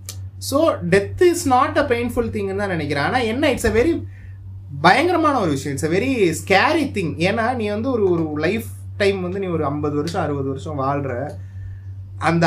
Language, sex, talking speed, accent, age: Tamil, male, 180 wpm, native, 20-39